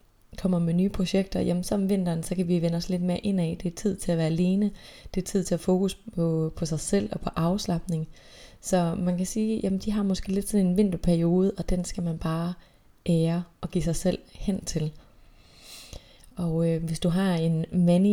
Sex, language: female, Danish